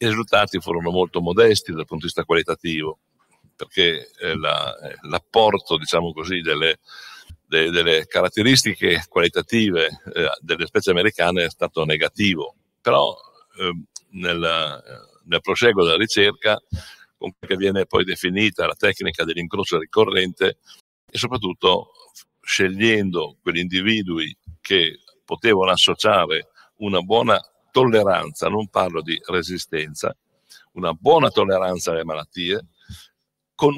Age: 60-79